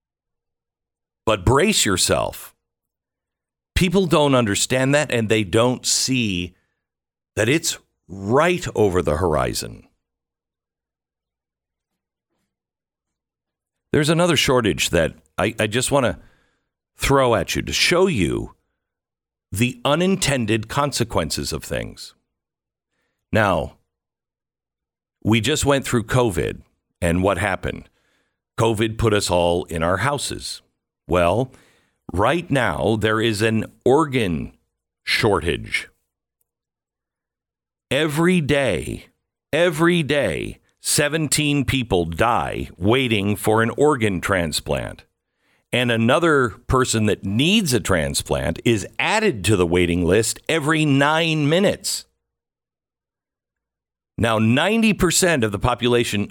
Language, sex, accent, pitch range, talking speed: English, male, American, 100-140 Hz, 100 wpm